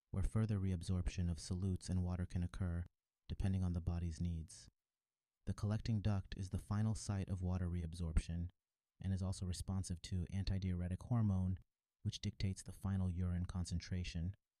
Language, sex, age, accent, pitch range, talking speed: English, male, 30-49, American, 90-100 Hz, 150 wpm